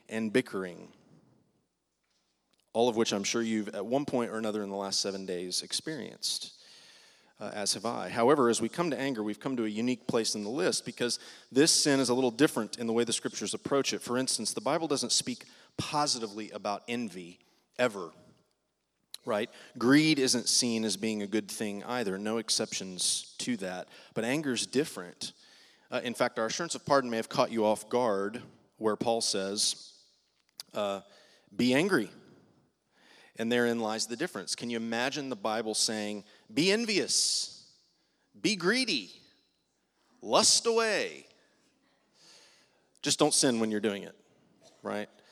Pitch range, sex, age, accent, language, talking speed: 110-140 Hz, male, 30-49, American, English, 165 wpm